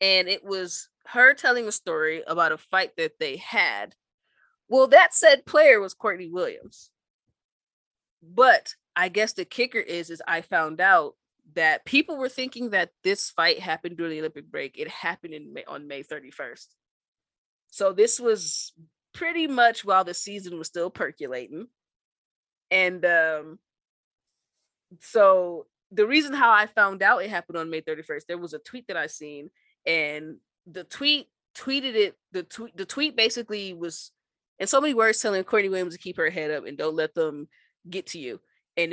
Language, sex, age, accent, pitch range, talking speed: English, female, 20-39, American, 165-255 Hz, 170 wpm